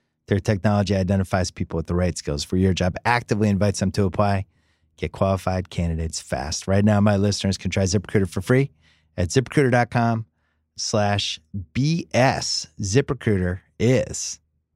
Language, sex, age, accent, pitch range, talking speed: English, male, 30-49, American, 85-115 Hz, 140 wpm